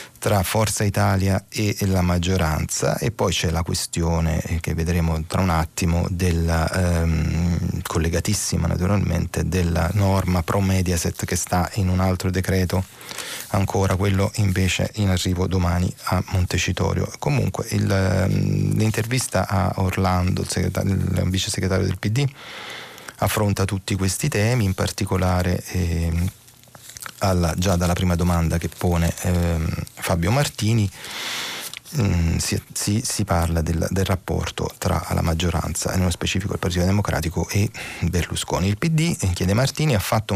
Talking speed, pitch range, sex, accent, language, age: 130 wpm, 90-105 Hz, male, native, Italian, 30-49